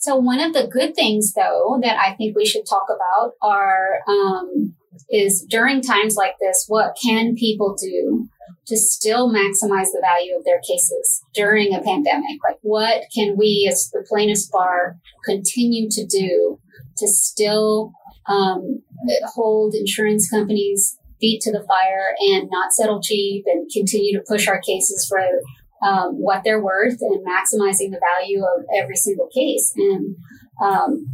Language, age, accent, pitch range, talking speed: English, 30-49, American, 195-245 Hz, 160 wpm